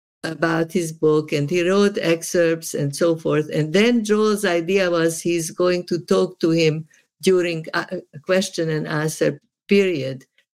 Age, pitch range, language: 50-69, 160-200 Hz, English